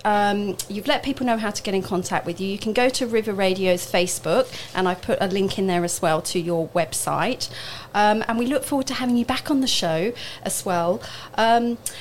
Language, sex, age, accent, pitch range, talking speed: English, female, 40-59, British, 185-230 Hz, 230 wpm